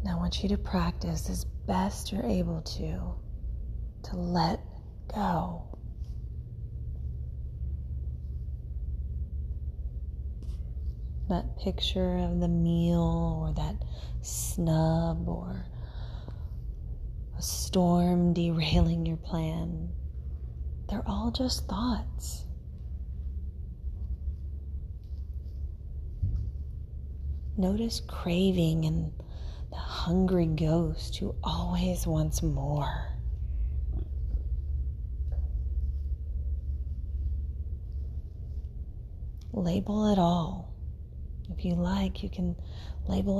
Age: 30-49